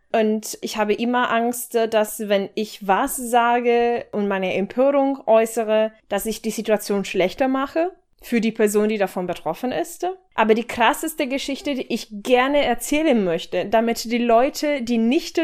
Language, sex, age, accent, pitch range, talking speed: German, female, 20-39, German, 200-255 Hz, 160 wpm